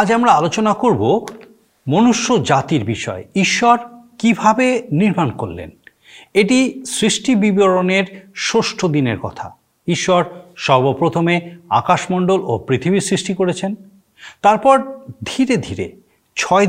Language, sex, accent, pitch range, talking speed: Bengali, male, native, 145-210 Hz, 100 wpm